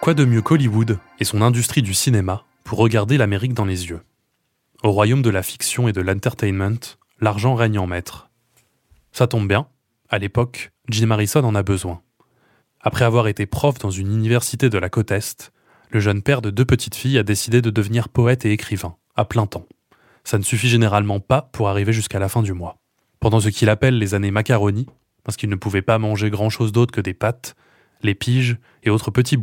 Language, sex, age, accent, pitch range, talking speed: French, male, 20-39, French, 105-120 Hz, 205 wpm